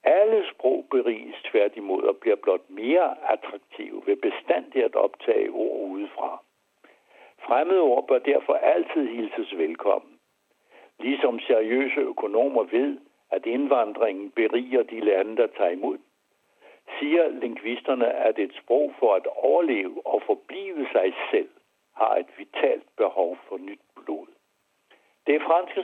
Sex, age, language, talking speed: male, 70-89, Danish, 130 wpm